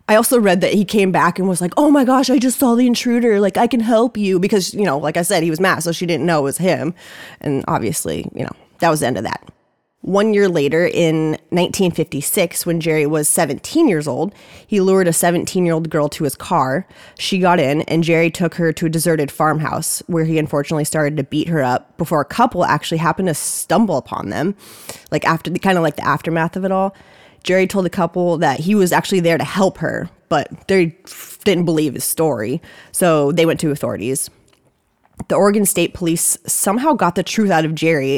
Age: 20-39